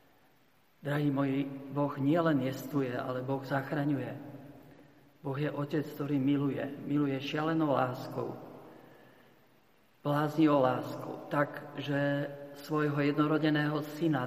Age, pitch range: 50-69, 130-145 Hz